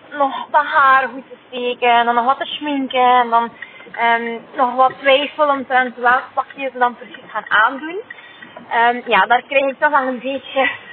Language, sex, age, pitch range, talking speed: Dutch, female, 20-39, 215-275 Hz, 190 wpm